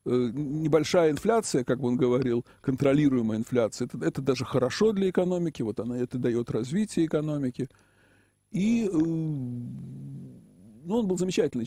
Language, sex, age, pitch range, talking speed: Russian, male, 50-69, 120-160 Hz, 125 wpm